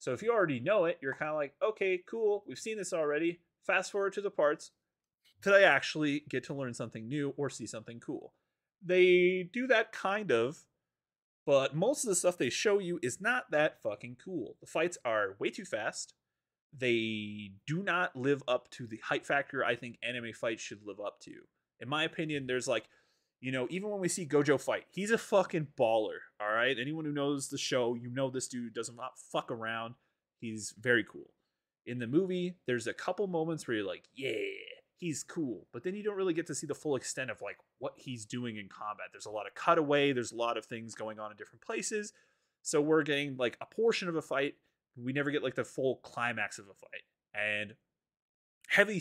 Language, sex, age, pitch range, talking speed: English, male, 30-49, 120-180 Hz, 215 wpm